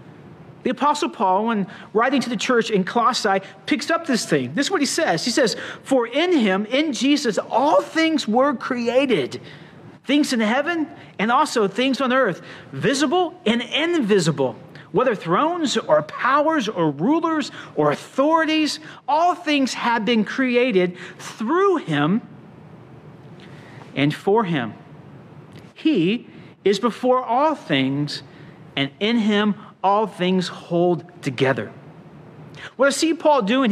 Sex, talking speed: male, 135 wpm